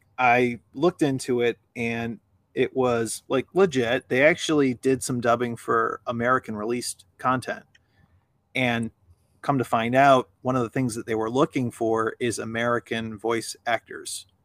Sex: male